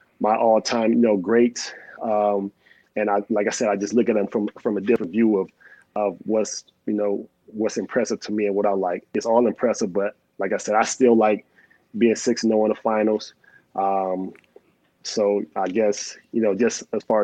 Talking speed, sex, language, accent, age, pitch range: 205 wpm, male, English, American, 30-49, 105-115 Hz